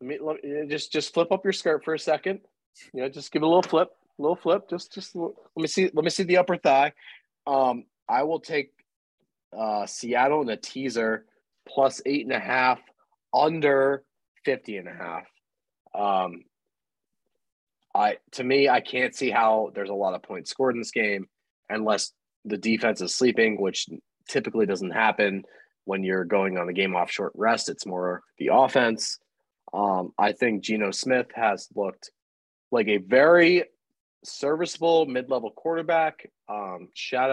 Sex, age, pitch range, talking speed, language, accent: male, 30-49, 105-155 Hz, 175 wpm, English, American